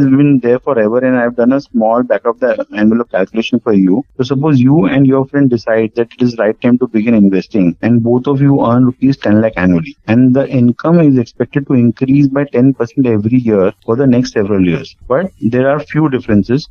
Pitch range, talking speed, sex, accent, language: 120-150 Hz, 220 wpm, male, Indian, English